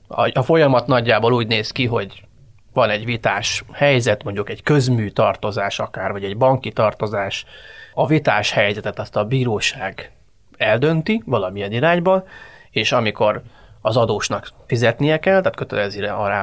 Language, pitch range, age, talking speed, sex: Hungarian, 105-135 Hz, 30-49, 140 wpm, male